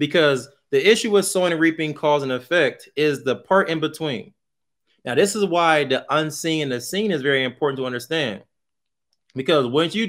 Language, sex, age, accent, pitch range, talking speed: English, male, 30-49, American, 140-195 Hz, 190 wpm